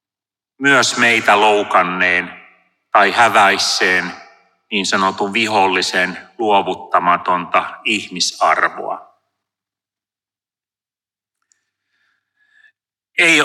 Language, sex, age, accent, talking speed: Finnish, male, 30-49, native, 50 wpm